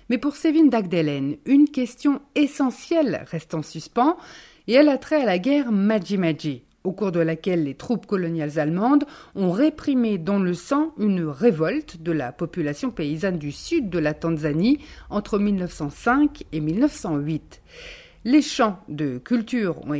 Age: 50-69